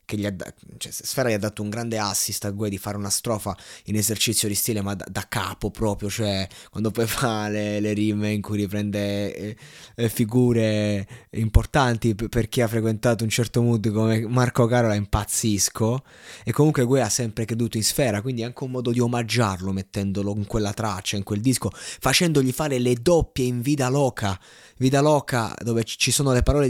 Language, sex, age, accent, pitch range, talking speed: Italian, male, 20-39, native, 105-125 Hz, 195 wpm